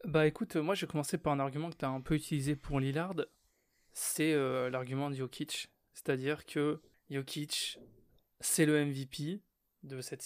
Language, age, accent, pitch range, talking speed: French, 20-39, French, 130-155 Hz, 175 wpm